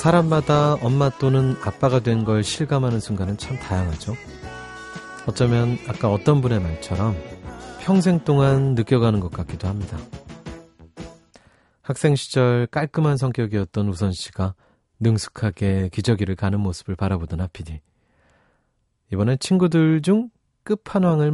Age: 30-49